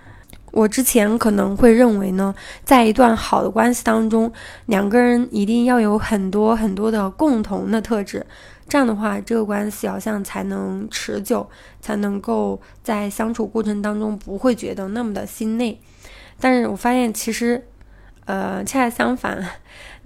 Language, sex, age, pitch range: Chinese, female, 10-29, 195-235 Hz